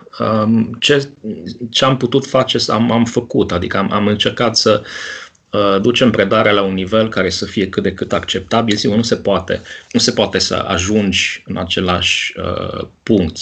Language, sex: Romanian, male